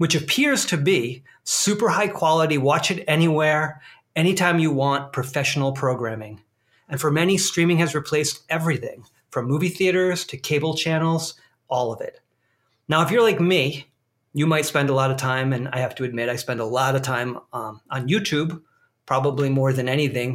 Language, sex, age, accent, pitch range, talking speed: English, male, 30-49, American, 130-165 Hz, 180 wpm